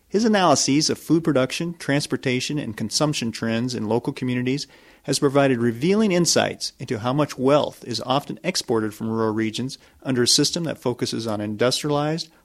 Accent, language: American, English